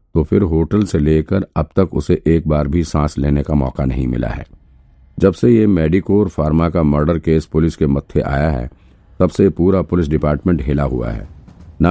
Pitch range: 70-90 Hz